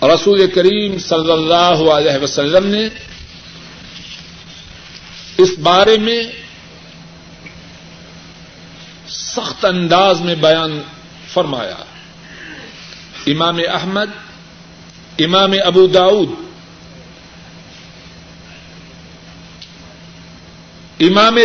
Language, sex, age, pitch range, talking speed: Urdu, male, 60-79, 170-215 Hz, 60 wpm